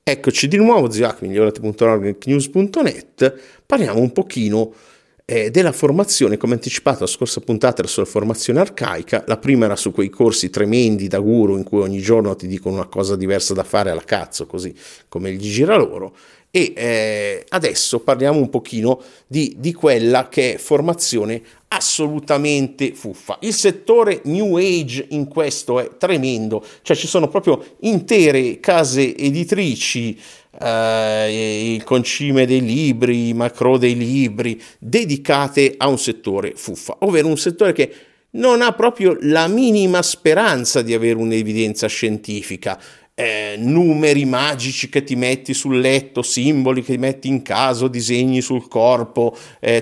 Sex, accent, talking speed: male, native, 145 wpm